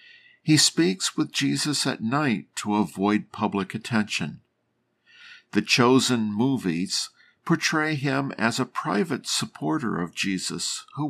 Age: 50-69